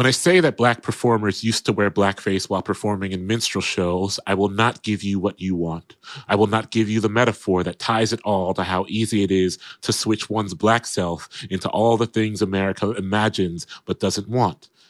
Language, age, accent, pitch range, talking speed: English, 30-49, American, 95-115 Hz, 215 wpm